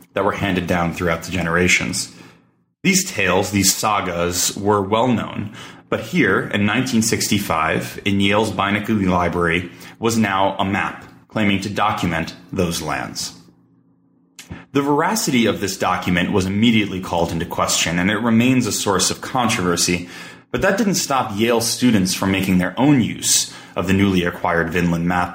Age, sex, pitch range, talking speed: 30-49, male, 90-110 Hz, 150 wpm